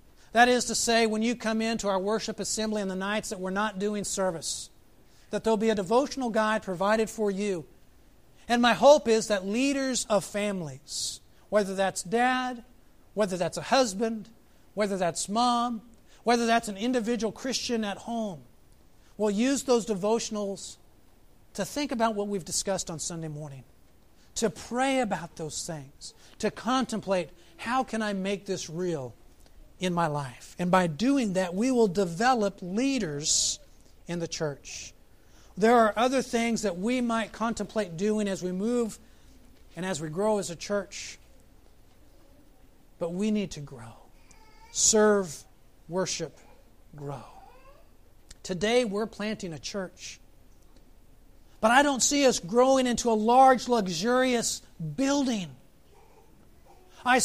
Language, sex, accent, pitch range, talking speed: English, male, American, 180-235 Hz, 145 wpm